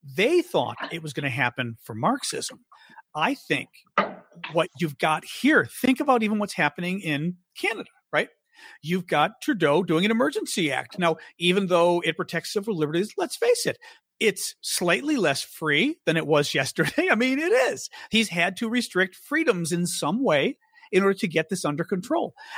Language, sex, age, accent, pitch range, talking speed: English, male, 40-59, American, 160-220 Hz, 180 wpm